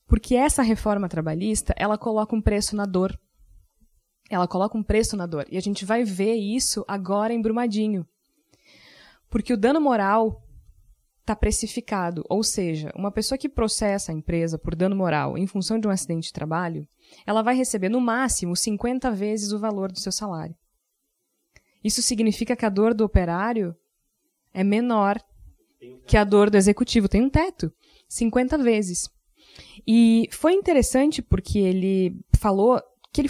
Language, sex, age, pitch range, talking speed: Portuguese, female, 20-39, 195-250 Hz, 160 wpm